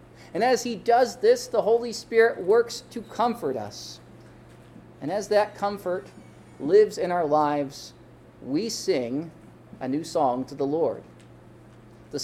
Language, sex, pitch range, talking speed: English, male, 135-180 Hz, 140 wpm